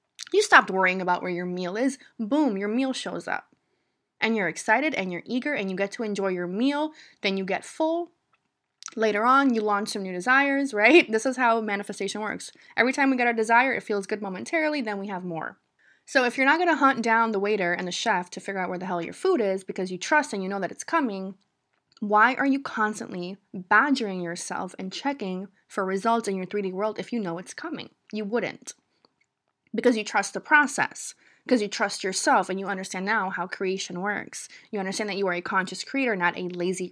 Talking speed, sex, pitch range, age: 220 wpm, female, 190-255 Hz, 20-39